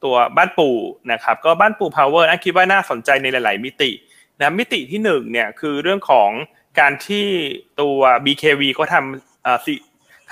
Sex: male